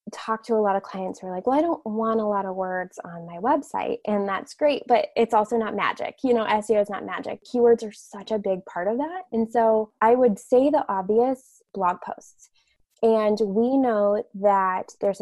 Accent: American